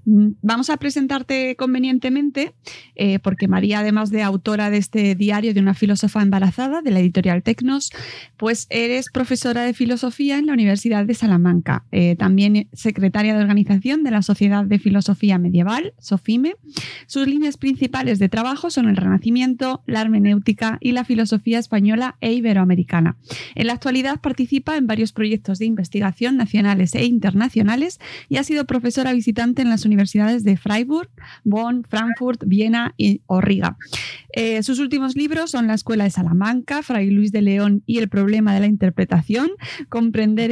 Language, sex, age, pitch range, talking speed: Spanish, female, 20-39, 200-250 Hz, 155 wpm